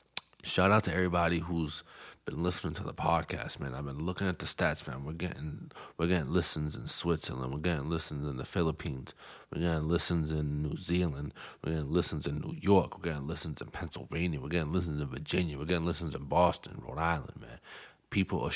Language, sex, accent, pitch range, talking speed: English, male, American, 75-90 Hz, 205 wpm